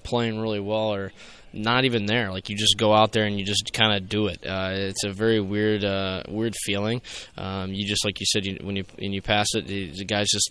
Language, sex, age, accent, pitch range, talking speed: English, male, 20-39, American, 100-110 Hz, 245 wpm